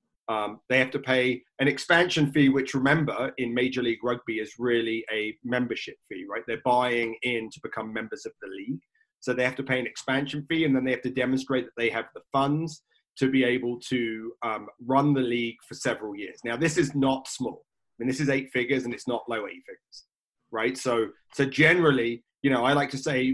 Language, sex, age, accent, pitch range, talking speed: English, male, 30-49, British, 120-140 Hz, 220 wpm